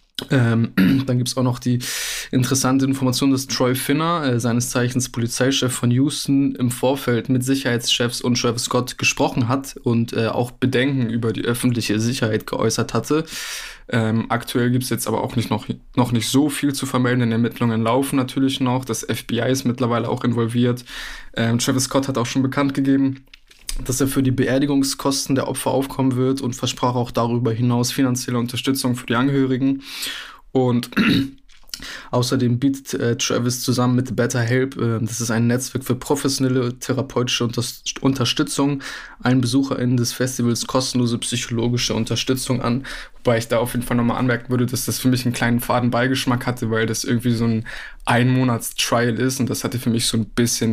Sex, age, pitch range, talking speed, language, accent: male, 20-39, 120-130 Hz, 175 wpm, German, German